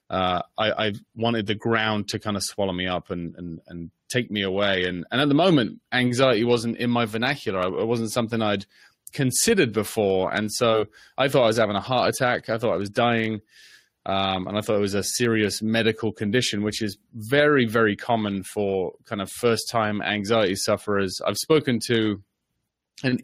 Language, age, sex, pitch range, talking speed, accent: English, 20-39, male, 100-120 Hz, 190 wpm, British